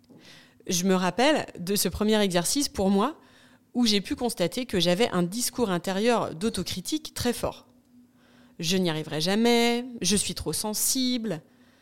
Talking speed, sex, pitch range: 145 wpm, female, 180-245 Hz